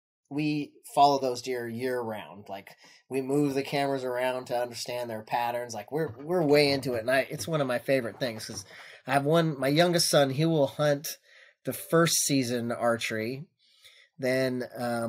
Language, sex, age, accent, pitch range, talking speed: English, male, 30-49, American, 110-140 Hz, 185 wpm